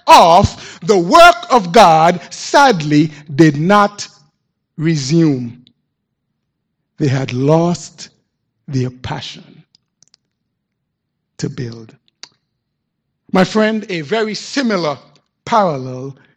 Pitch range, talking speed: 165-230 Hz, 80 wpm